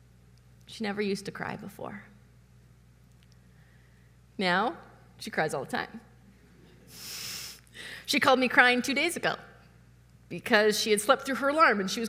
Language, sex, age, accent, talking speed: English, female, 30-49, American, 145 wpm